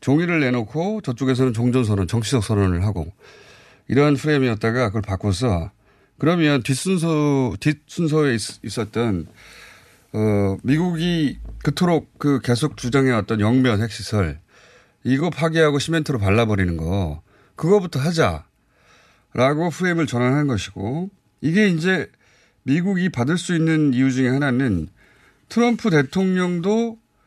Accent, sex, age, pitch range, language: native, male, 30-49, 105-160 Hz, Korean